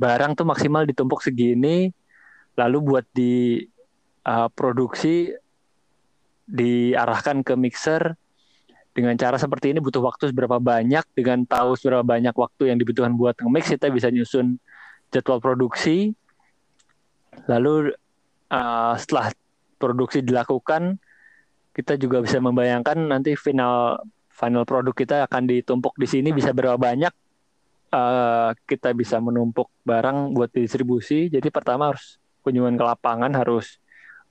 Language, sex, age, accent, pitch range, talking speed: Indonesian, male, 20-39, native, 120-135 Hz, 120 wpm